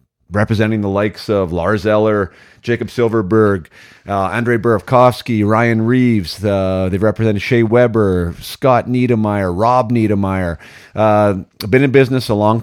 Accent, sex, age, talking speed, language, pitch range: American, male, 40-59, 135 wpm, English, 85-110 Hz